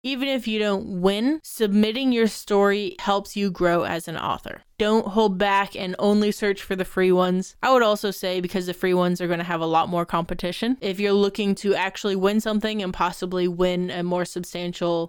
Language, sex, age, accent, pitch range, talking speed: English, female, 20-39, American, 180-220 Hz, 210 wpm